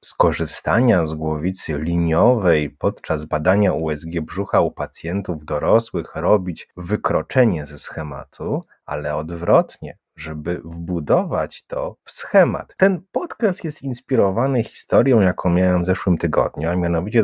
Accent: native